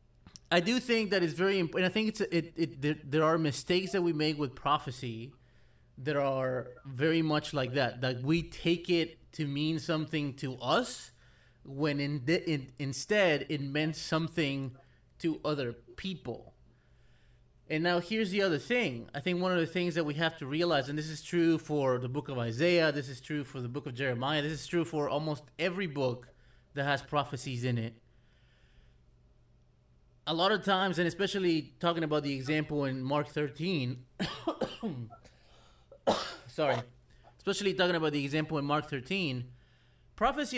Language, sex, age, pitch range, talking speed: English, male, 20-39, 135-170 Hz, 175 wpm